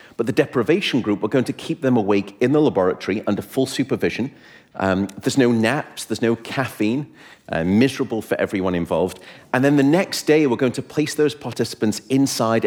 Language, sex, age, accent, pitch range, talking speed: English, male, 40-59, British, 110-140 Hz, 190 wpm